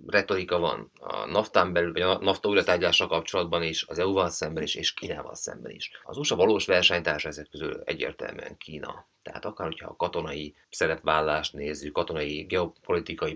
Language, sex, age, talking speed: Hungarian, male, 30-49, 150 wpm